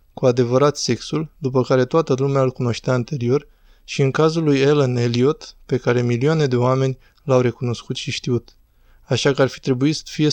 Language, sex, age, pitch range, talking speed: Romanian, male, 20-39, 125-140 Hz, 180 wpm